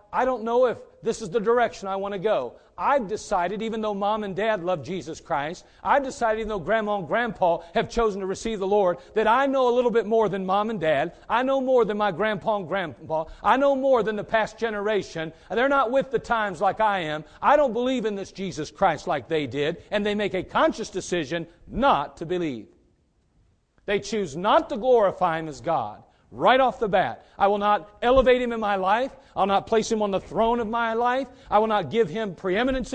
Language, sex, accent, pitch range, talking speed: English, male, American, 155-225 Hz, 225 wpm